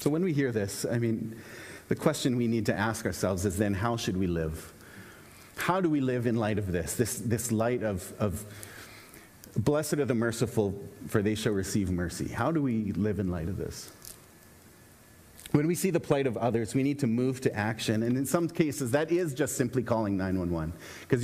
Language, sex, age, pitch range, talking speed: English, male, 30-49, 105-150 Hz, 210 wpm